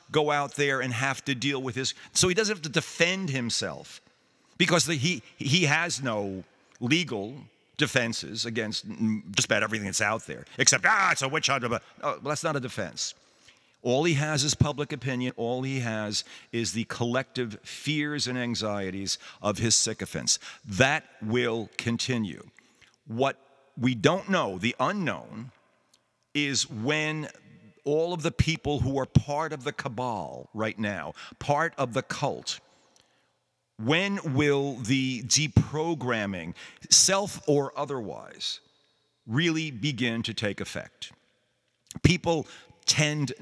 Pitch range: 115-150 Hz